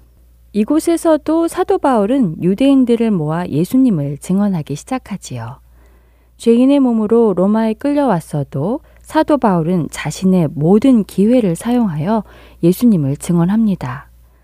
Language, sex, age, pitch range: Korean, female, 20-39, 145-225 Hz